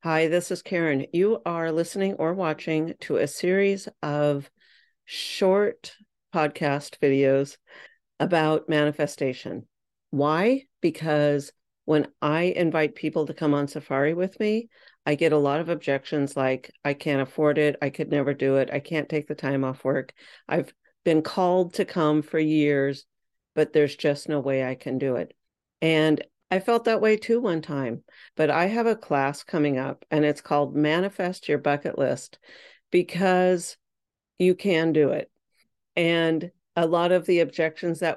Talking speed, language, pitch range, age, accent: 160 wpm, English, 145-175 Hz, 50-69, American